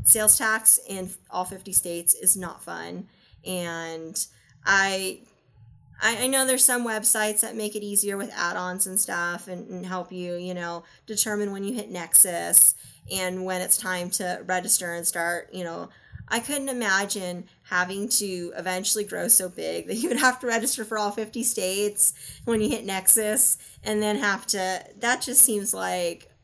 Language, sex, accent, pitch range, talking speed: English, female, American, 180-215 Hz, 170 wpm